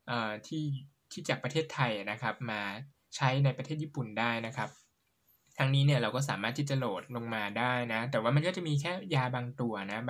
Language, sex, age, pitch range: Thai, male, 10-29, 115-145 Hz